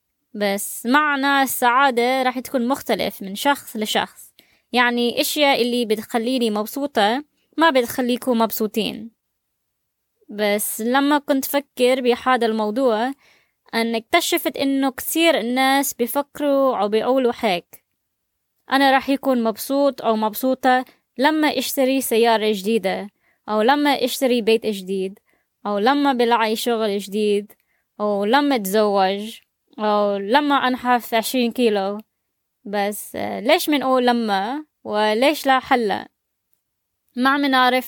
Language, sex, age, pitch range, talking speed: Arabic, female, 20-39, 220-275 Hz, 110 wpm